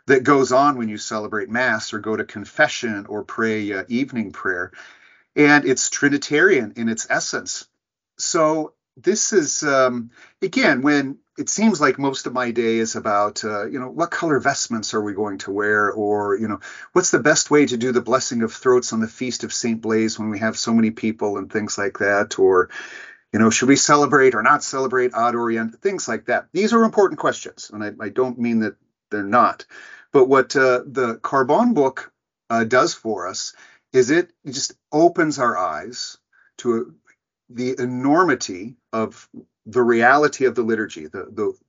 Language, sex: English, male